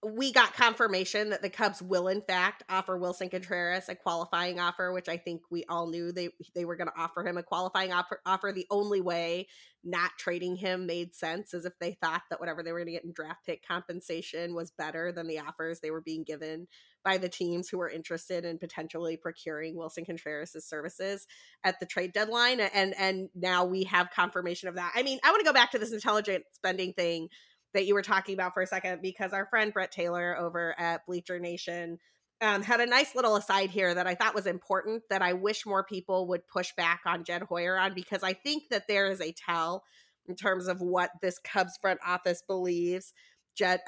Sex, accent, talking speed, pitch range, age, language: female, American, 215 wpm, 175-195 Hz, 20-39, English